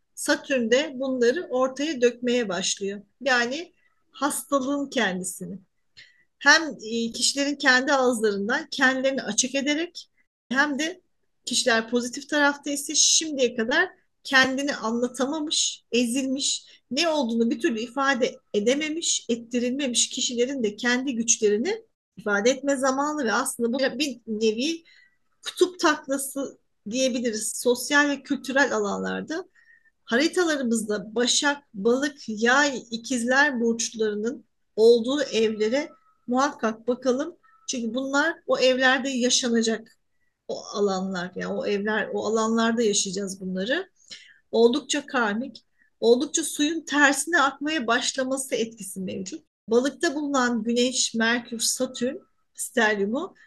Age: 40-59